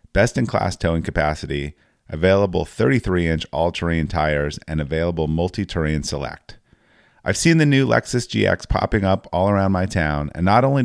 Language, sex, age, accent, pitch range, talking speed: English, male, 30-49, American, 80-110 Hz, 145 wpm